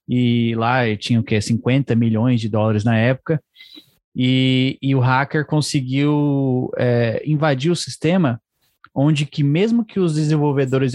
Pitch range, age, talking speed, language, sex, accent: 125-150 Hz, 20-39, 140 wpm, Portuguese, male, Brazilian